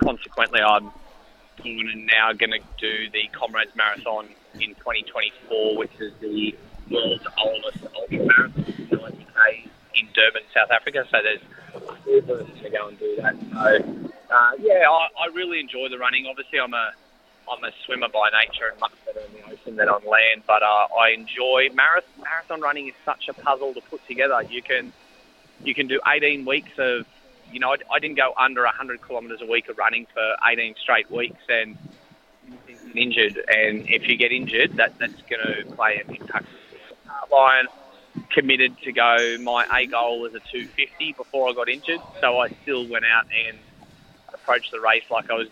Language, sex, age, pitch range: English, male, 20-39, 110-150 Hz